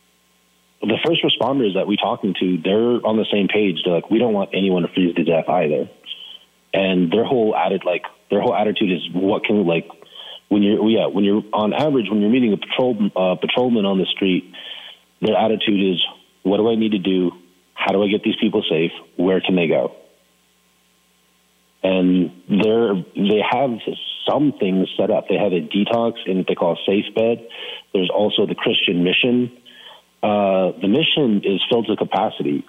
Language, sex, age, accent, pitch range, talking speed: English, male, 30-49, American, 95-105 Hz, 185 wpm